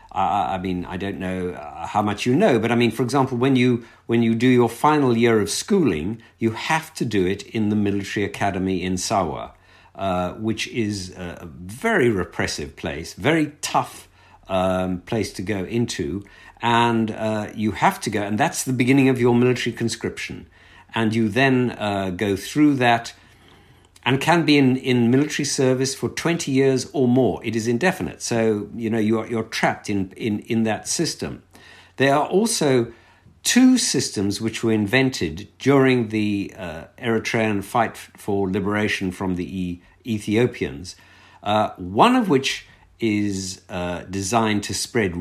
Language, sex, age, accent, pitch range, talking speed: English, male, 50-69, British, 95-120 Hz, 165 wpm